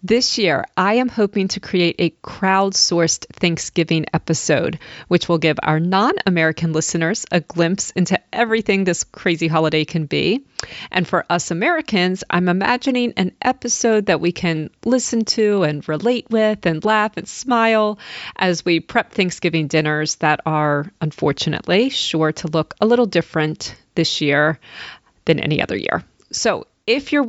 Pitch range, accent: 165-215 Hz, American